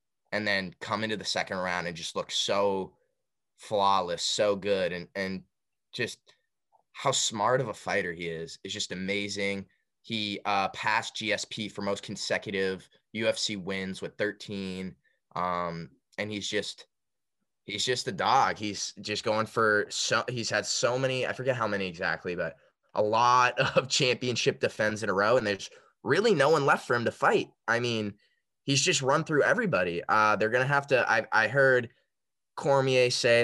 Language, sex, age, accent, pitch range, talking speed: English, male, 20-39, American, 95-115 Hz, 175 wpm